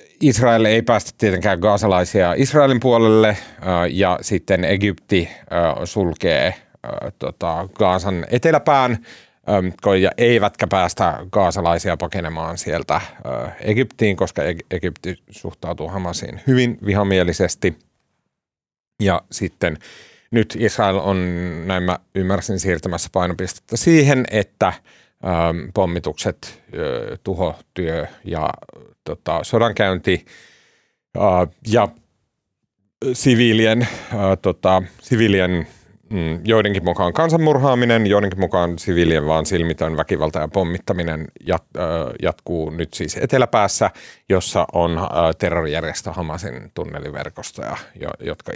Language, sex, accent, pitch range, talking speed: Finnish, male, native, 85-110 Hz, 80 wpm